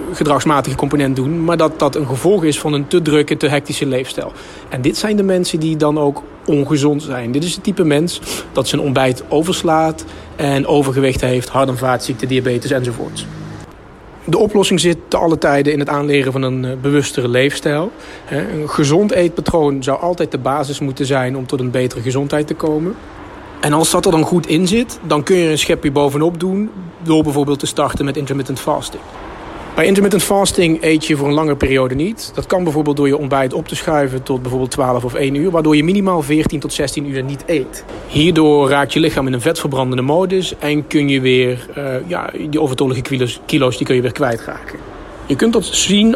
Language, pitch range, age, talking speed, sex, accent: Dutch, 135-160 Hz, 30-49, 200 wpm, male, Dutch